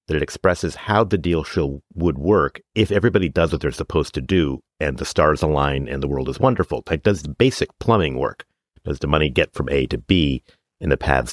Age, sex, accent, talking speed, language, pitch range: 50-69, male, American, 230 wpm, English, 70-100 Hz